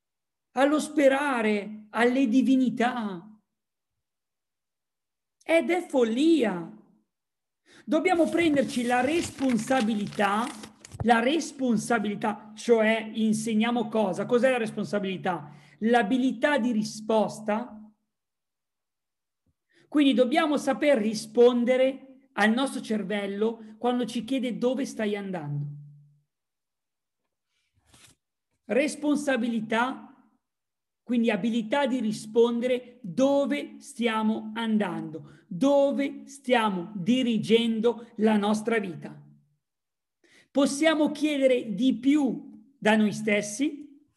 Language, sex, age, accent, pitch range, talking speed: Italian, male, 40-59, native, 210-265 Hz, 75 wpm